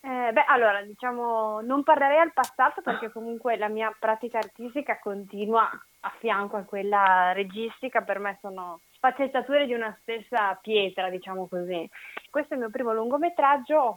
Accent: native